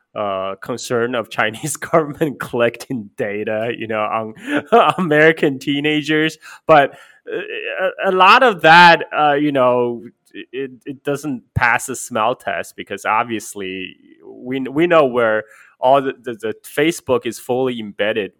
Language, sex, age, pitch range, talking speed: English, male, 20-39, 110-155 Hz, 135 wpm